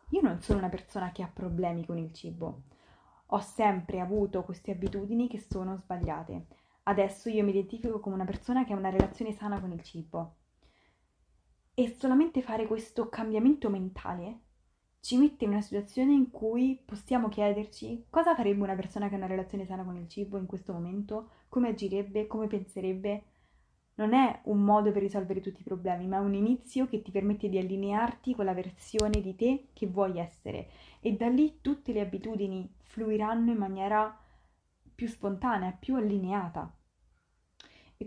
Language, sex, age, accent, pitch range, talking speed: Italian, female, 20-39, native, 190-230 Hz, 170 wpm